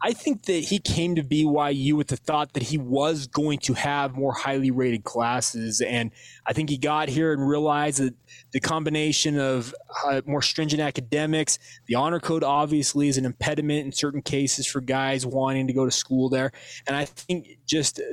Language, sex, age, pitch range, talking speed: English, male, 20-39, 125-150 Hz, 190 wpm